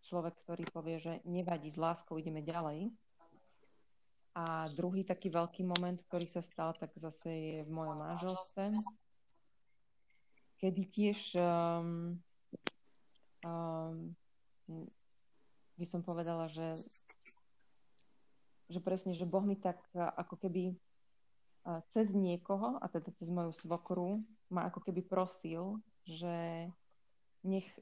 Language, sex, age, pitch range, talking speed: Slovak, female, 20-39, 160-185 Hz, 110 wpm